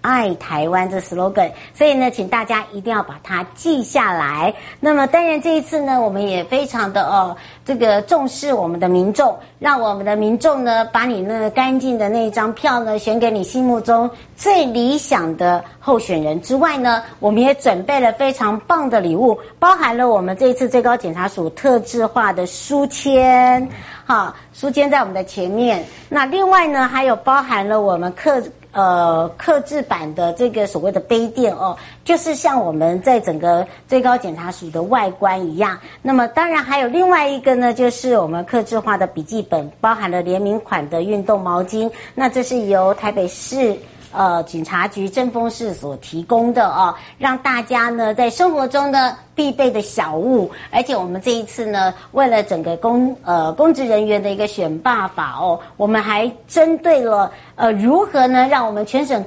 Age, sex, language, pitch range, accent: 50-69, male, Chinese, 195-260 Hz, American